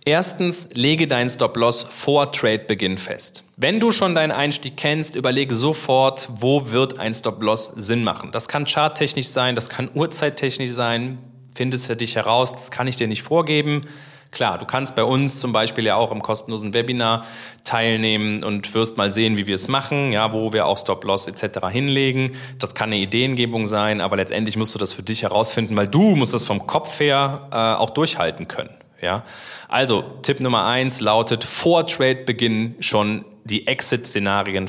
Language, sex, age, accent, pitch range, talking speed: German, male, 30-49, German, 110-135 Hz, 175 wpm